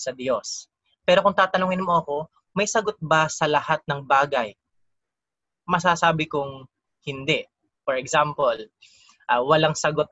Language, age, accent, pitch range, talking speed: Filipino, 20-39, native, 135-160 Hz, 130 wpm